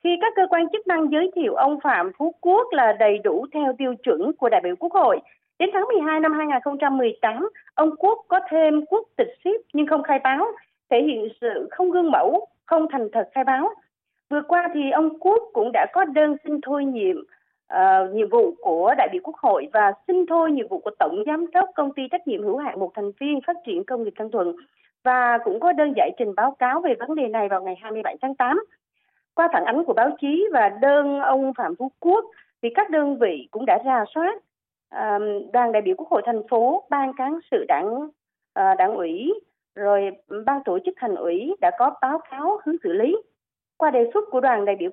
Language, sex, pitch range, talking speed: Vietnamese, female, 260-380 Hz, 220 wpm